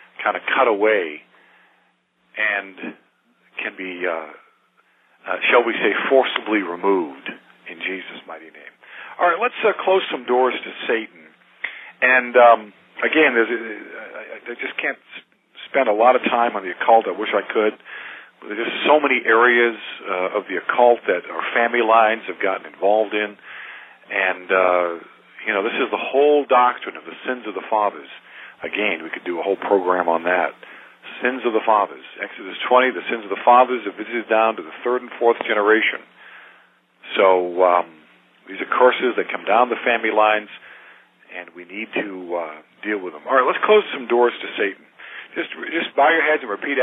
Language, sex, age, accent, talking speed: English, male, 50-69, American, 180 wpm